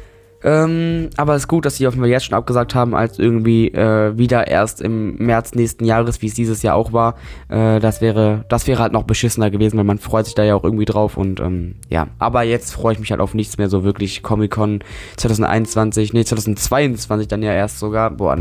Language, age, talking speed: German, 20-39, 220 wpm